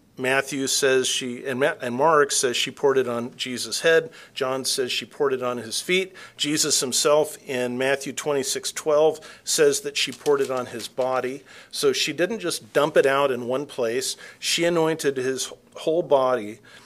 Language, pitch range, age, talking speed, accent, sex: English, 130-200 Hz, 50-69, 185 wpm, American, male